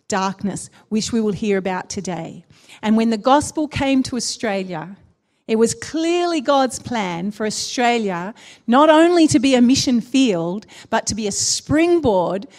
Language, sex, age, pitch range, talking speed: English, female, 40-59, 210-275 Hz, 155 wpm